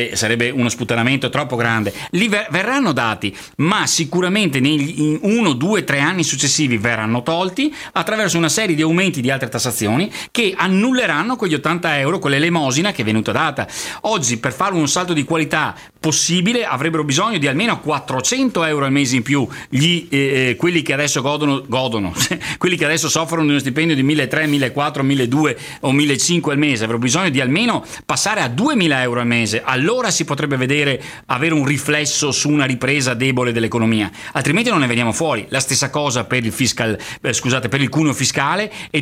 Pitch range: 125-160 Hz